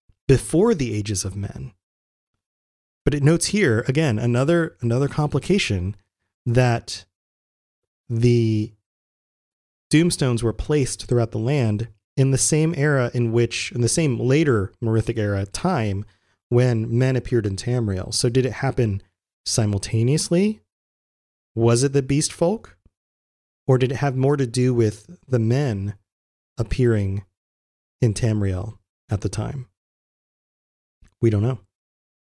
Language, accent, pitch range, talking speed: English, American, 100-135 Hz, 125 wpm